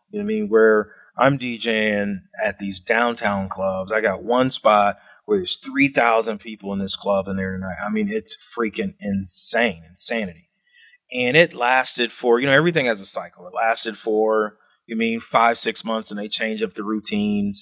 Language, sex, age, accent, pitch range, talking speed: English, male, 30-49, American, 105-130 Hz, 195 wpm